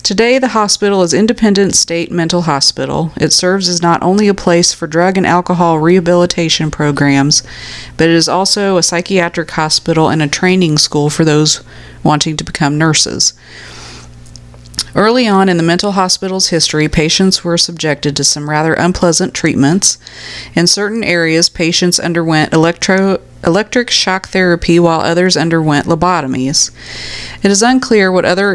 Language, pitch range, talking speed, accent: English, 155-185 Hz, 150 wpm, American